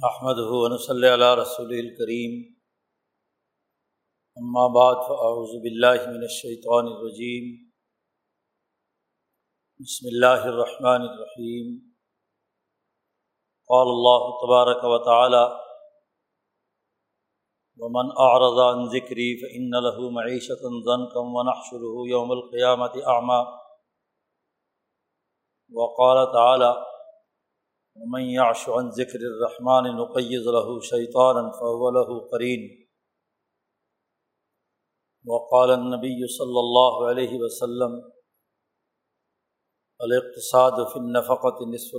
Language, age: Urdu, 50-69